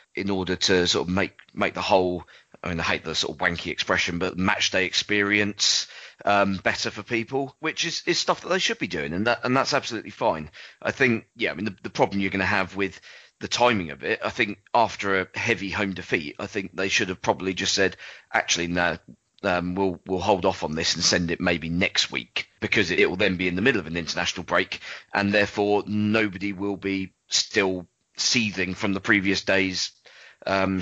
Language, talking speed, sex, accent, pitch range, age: English, 220 wpm, male, British, 90-105 Hz, 30-49